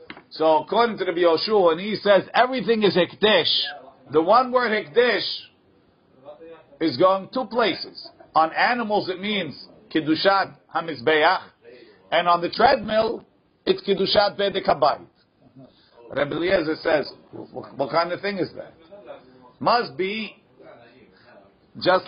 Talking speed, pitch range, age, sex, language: 120 wpm, 155-215 Hz, 50-69, male, English